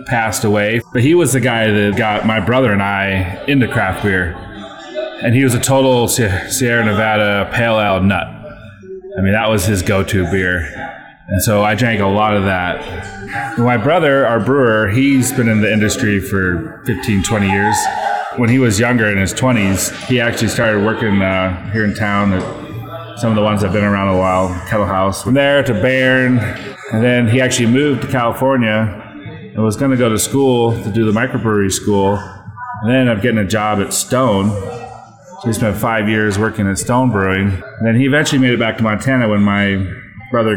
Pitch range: 100-120 Hz